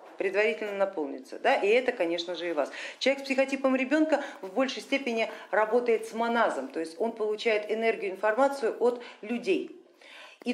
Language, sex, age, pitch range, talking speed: Russian, female, 40-59, 195-265 Hz, 160 wpm